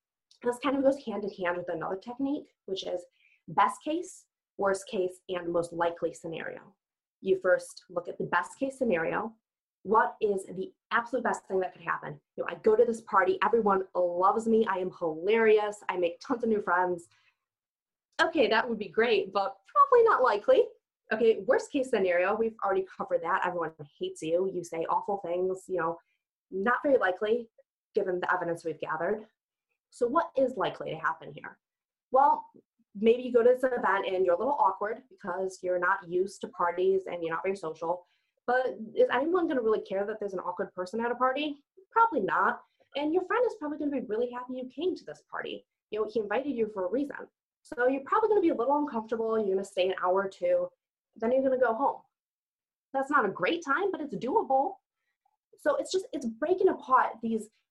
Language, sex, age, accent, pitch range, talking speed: English, female, 20-39, American, 185-275 Hz, 205 wpm